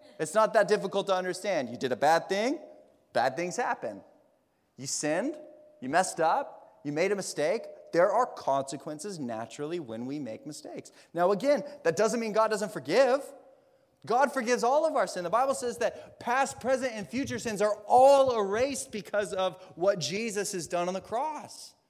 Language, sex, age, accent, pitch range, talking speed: English, male, 30-49, American, 145-240 Hz, 180 wpm